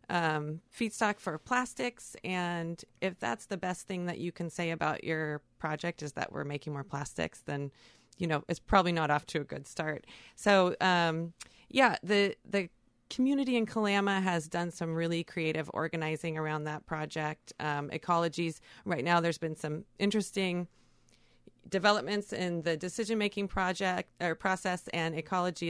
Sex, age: female, 40-59